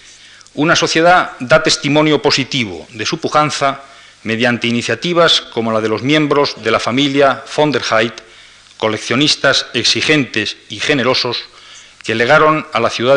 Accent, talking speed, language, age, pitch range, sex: Spanish, 135 wpm, Spanish, 40-59, 110-140 Hz, male